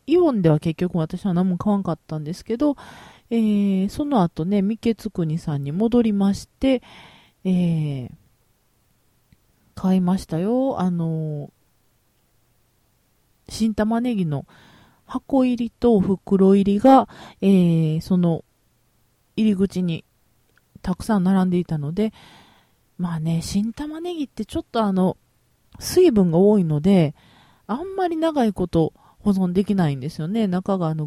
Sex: female